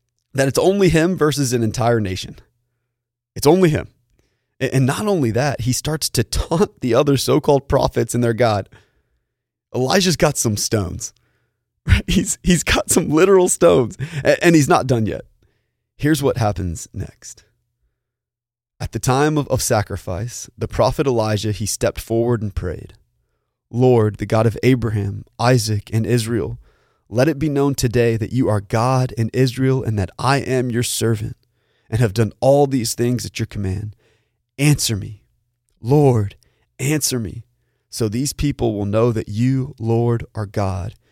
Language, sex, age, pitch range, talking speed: English, male, 20-39, 105-125 Hz, 160 wpm